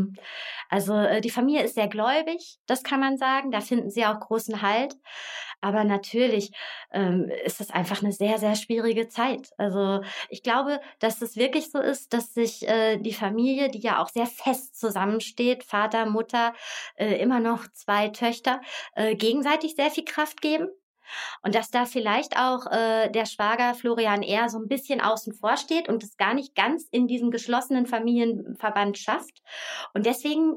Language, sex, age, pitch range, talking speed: German, female, 30-49, 205-260 Hz, 170 wpm